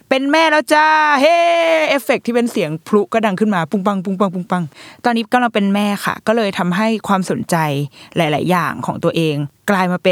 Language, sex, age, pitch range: Thai, female, 20-39, 170-230 Hz